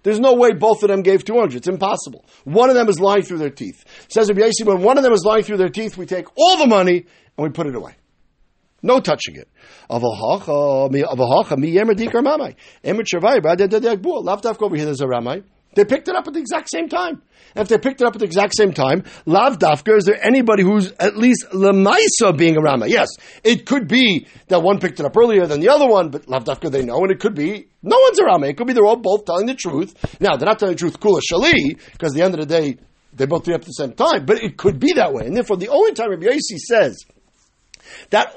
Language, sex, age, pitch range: English, male, 60-79, 165-240 Hz